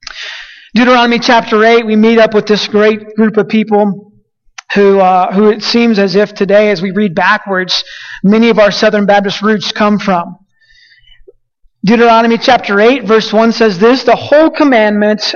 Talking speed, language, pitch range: 165 wpm, English, 210-245 Hz